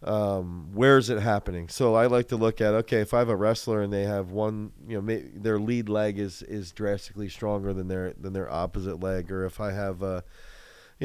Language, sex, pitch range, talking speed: English, male, 100-120 Hz, 225 wpm